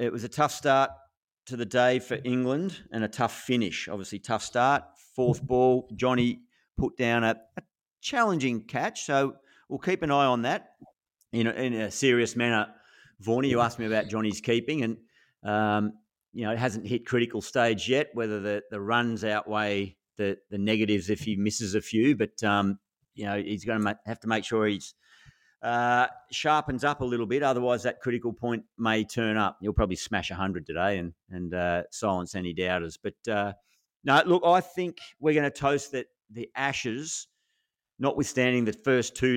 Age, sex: 50-69, male